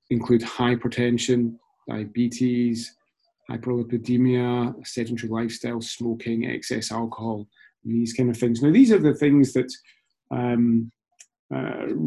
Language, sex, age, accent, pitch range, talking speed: English, male, 30-49, British, 115-135 Hz, 110 wpm